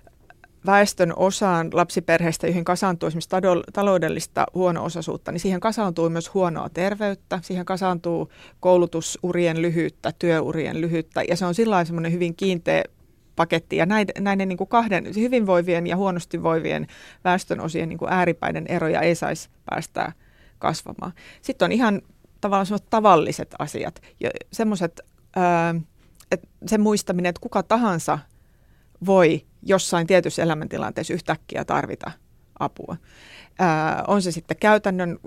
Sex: female